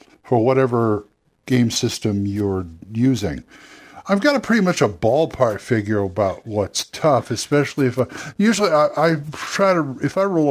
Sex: male